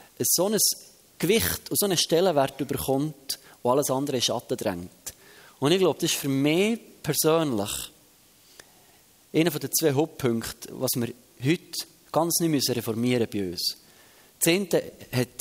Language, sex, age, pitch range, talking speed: German, male, 30-49, 120-155 Hz, 145 wpm